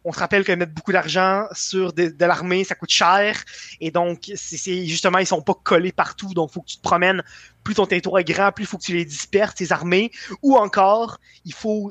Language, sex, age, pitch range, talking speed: French, male, 20-39, 170-200 Hz, 250 wpm